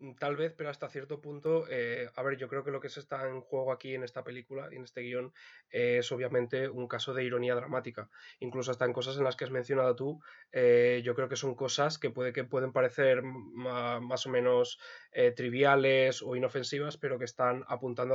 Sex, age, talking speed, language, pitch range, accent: male, 20-39, 220 wpm, Spanish, 125-145 Hz, Spanish